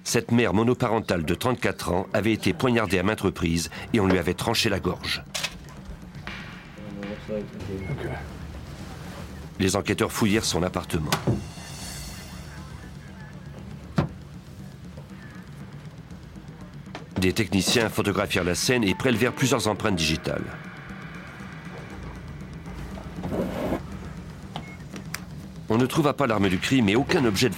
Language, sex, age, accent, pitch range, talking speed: French, male, 50-69, French, 95-115 Hz, 100 wpm